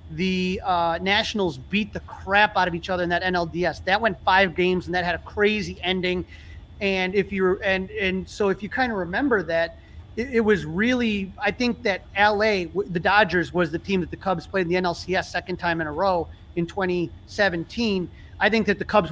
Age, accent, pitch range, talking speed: 30-49, American, 180-205 Hz, 210 wpm